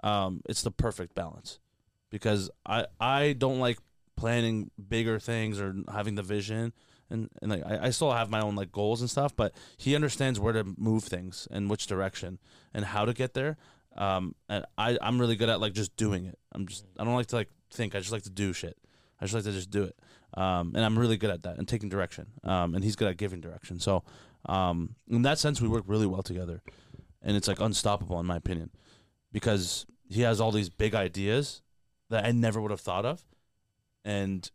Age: 20-39